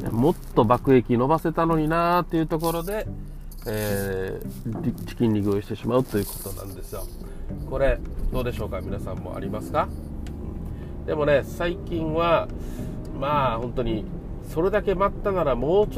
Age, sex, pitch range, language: 40-59, male, 110-165 Hz, Japanese